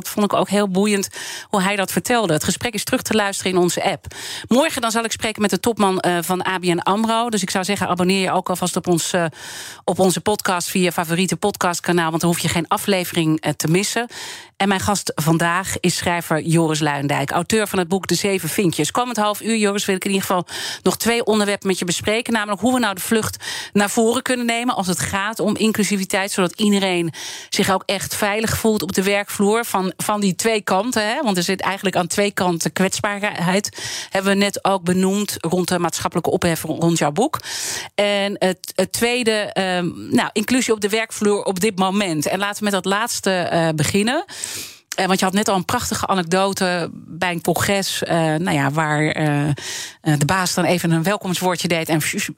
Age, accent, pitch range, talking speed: 40-59, Dutch, 175-210 Hz, 200 wpm